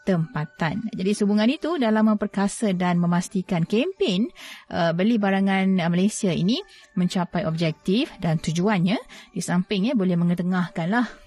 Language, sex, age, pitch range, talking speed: Malay, female, 30-49, 175-210 Hz, 125 wpm